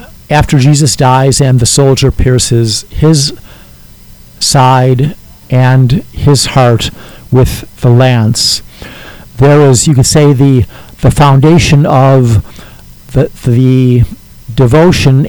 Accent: American